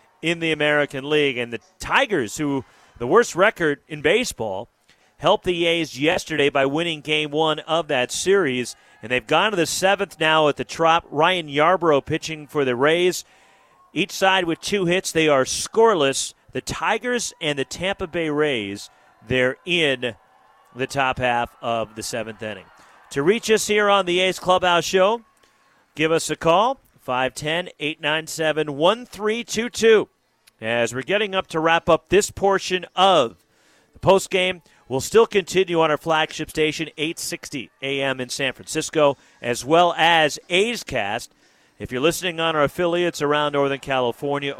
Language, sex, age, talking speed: English, male, 40-59, 155 wpm